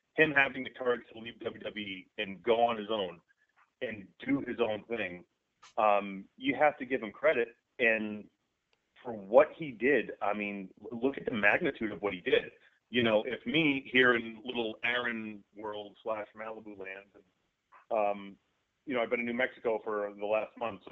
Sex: male